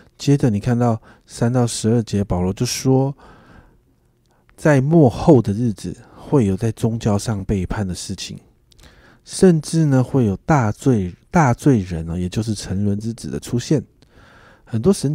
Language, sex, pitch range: Chinese, male, 100-130 Hz